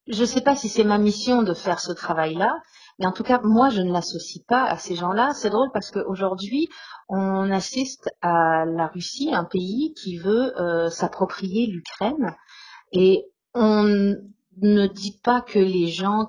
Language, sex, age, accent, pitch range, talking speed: French, female, 40-59, French, 180-235 Hz, 175 wpm